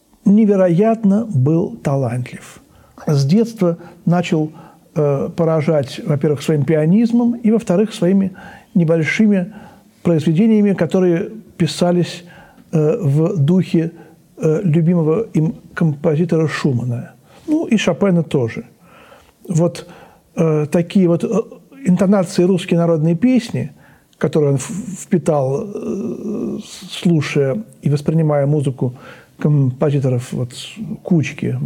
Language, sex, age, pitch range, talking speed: Russian, male, 60-79, 155-200 Hz, 95 wpm